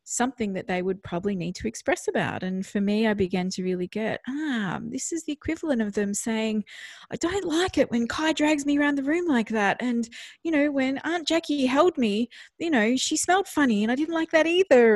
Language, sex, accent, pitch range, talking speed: English, female, Australian, 180-240 Hz, 230 wpm